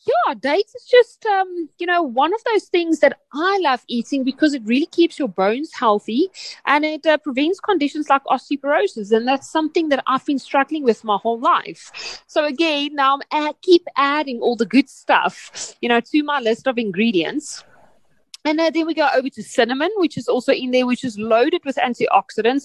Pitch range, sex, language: 230-330 Hz, female, English